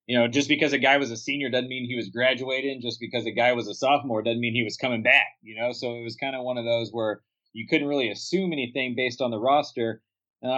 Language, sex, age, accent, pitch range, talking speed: English, male, 30-49, American, 115-145 Hz, 270 wpm